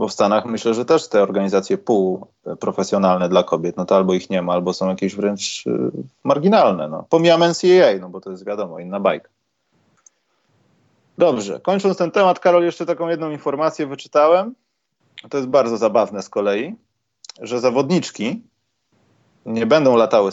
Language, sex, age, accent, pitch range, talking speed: Polish, male, 30-49, native, 110-160 Hz, 155 wpm